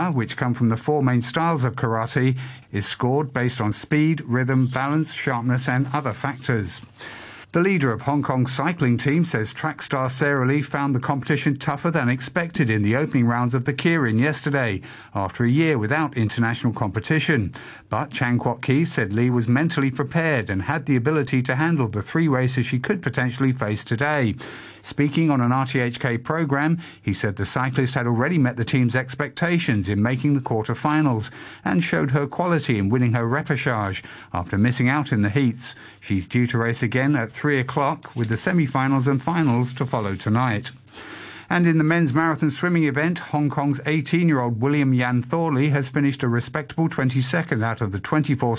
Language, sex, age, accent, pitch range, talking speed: English, male, 50-69, British, 120-150 Hz, 185 wpm